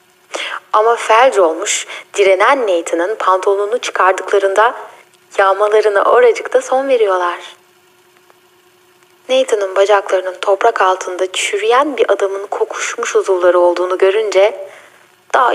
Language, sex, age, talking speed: Turkish, female, 10-29, 90 wpm